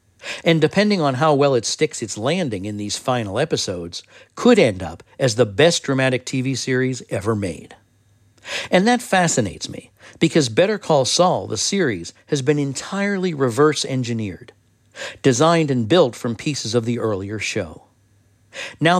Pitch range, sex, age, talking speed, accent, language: 110-155 Hz, male, 60-79, 150 wpm, American, English